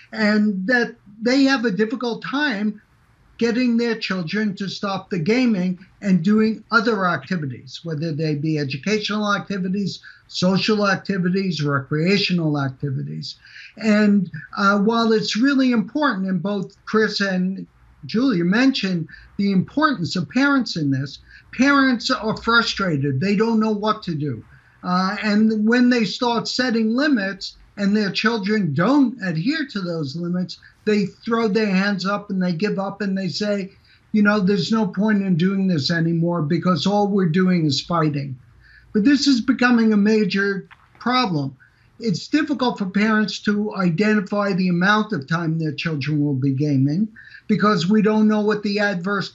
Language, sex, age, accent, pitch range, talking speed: English, male, 60-79, American, 175-220 Hz, 150 wpm